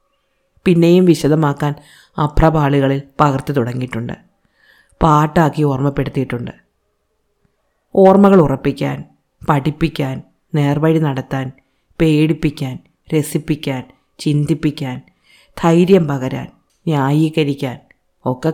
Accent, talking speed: native, 60 wpm